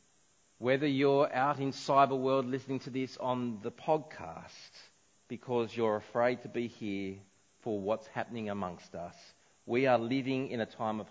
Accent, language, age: Australian, English, 40-59